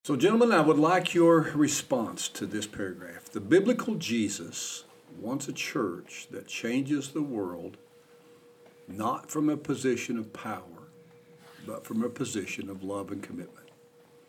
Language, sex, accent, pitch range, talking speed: English, male, American, 100-160 Hz, 145 wpm